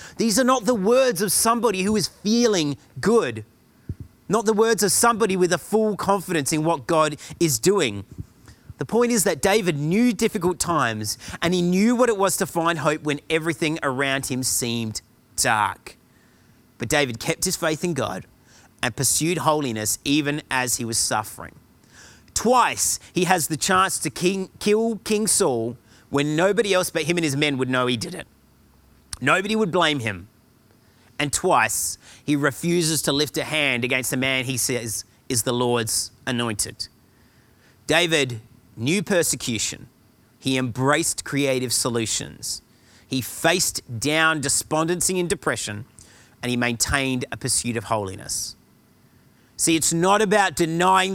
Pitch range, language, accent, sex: 120-180 Hz, English, Australian, male